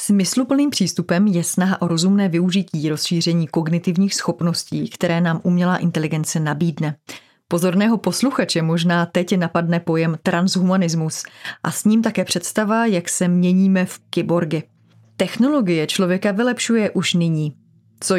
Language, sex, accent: Czech, female, native